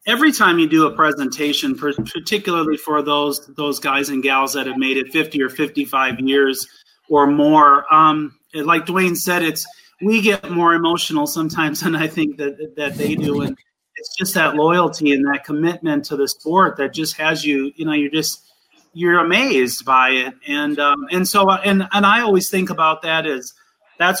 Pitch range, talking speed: 140-165 Hz, 190 wpm